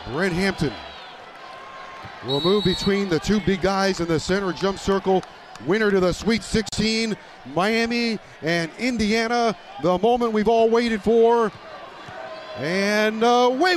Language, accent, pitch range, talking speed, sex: English, American, 175-200 Hz, 130 wpm, male